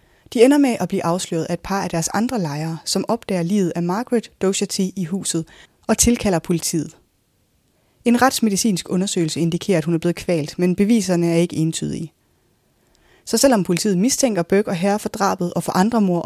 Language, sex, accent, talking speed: Danish, female, native, 190 wpm